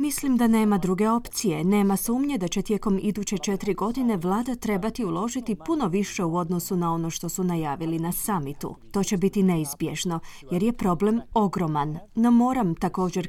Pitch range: 175-225 Hz